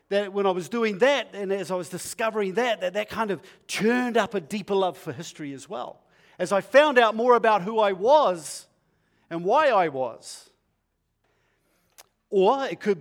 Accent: Australian